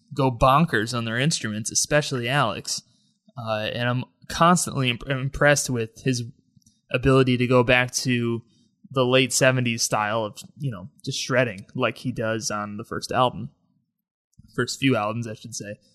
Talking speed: 155 wpm